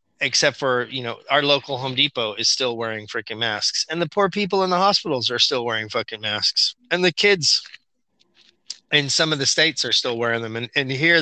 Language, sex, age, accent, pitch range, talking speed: English, male, 30-49, American, 115-135 Hz, 215 wpm